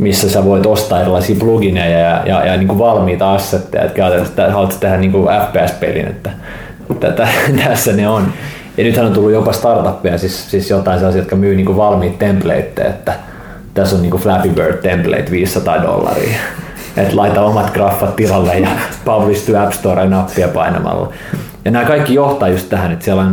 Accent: native